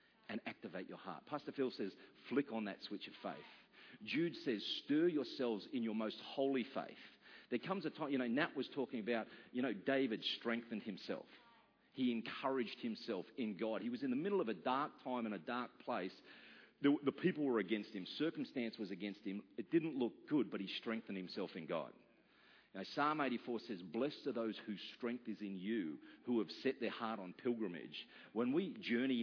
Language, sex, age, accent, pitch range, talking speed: English, male, 40-59, Australian, 105-155 Hz, 195 wpm